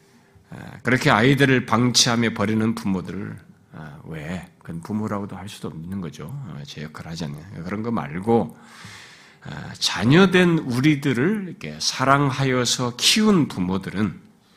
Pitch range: 105-160 Hz